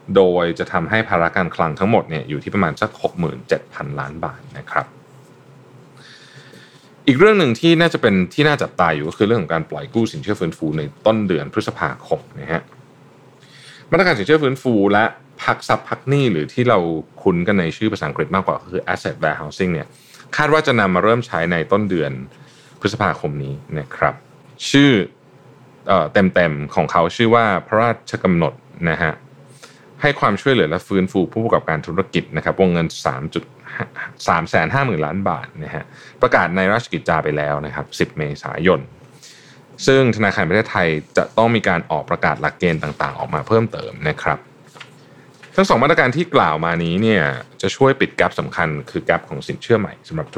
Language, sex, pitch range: Thai, male, 85-130 Hz